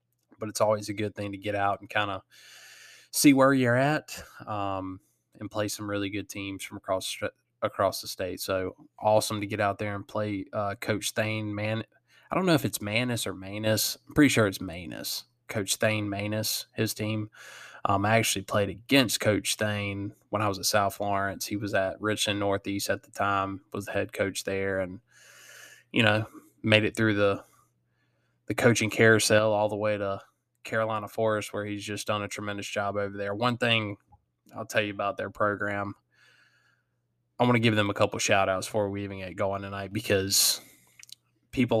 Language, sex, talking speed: English, male, 190 wpm